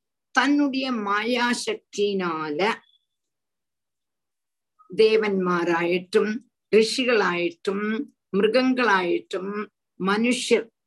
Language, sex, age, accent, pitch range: Tamil, female, 50-69, native, 190-270 Hz